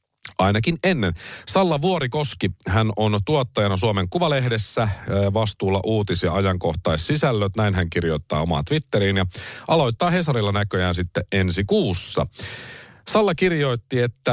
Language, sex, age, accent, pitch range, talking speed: Finnish, male, 40-59, native, 95-125 Hz, 120 wpm